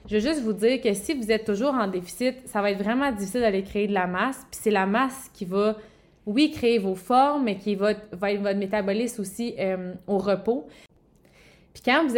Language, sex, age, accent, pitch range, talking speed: French, female, 20-39, Canadian, 205-255 Hz, 220 wpm